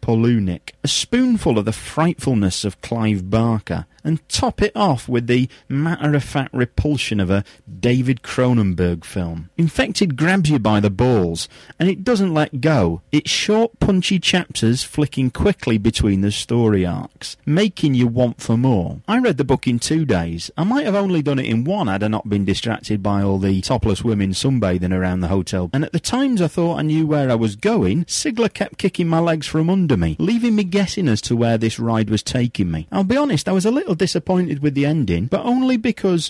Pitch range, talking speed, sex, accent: 110-185 Hz, 200 wpm, male, British